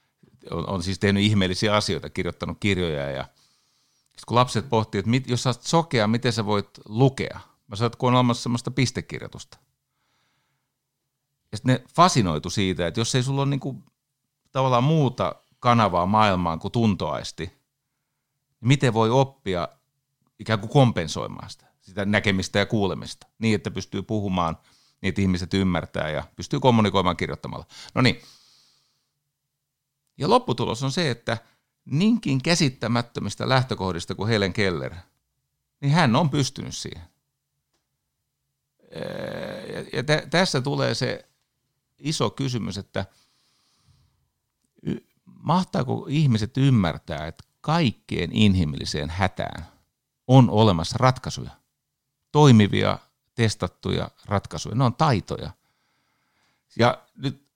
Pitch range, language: 100-135 Hz, Finnish